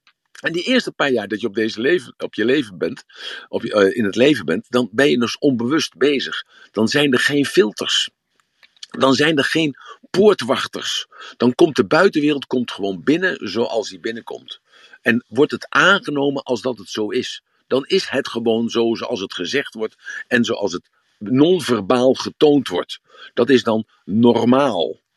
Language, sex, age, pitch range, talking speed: Dutch, male, 50-69, 115-145 Hz, 155 wpm